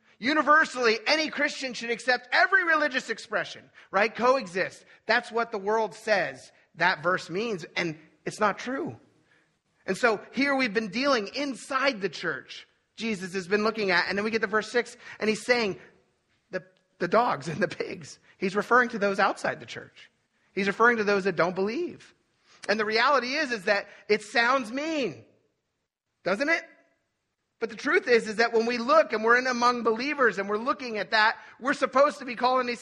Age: 30-49